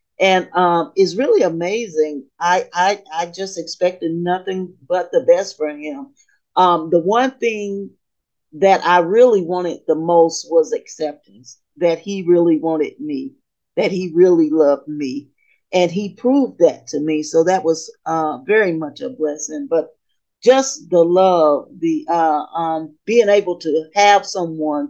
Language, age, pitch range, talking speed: English, 40-59, 160-235 Hz, 155 wpm